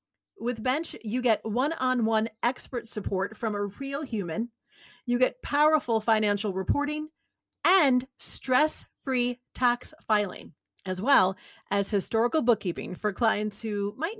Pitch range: 200-255 Hz